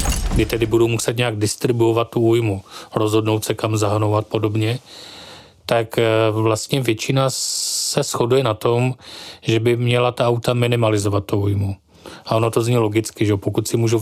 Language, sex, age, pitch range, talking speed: Czech, male, 40-59, 110-120 Hz, 160 wpm